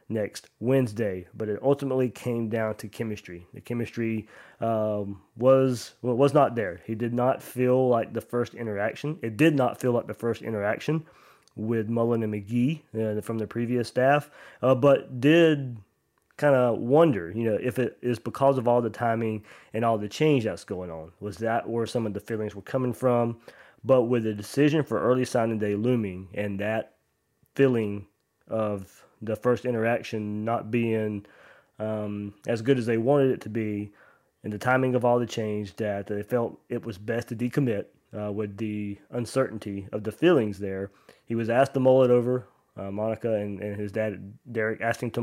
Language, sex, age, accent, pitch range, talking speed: English, male, 20-39, American, 105-125 Hz, 190 wpm